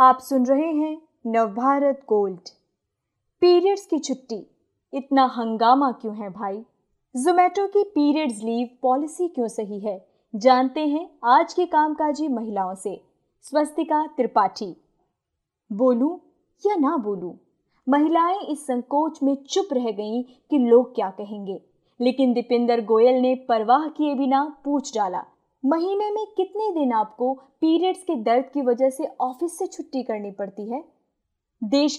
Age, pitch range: 20-39, 235-315 Hz